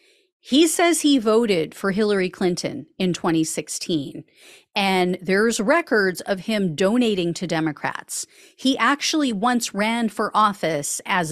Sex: female